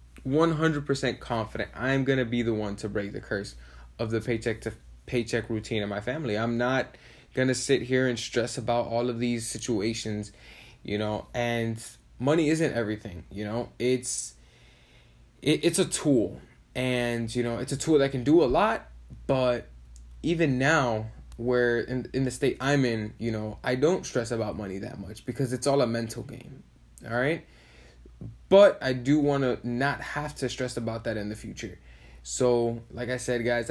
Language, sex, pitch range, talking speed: English, male, 110-130 Hz, 180 wpm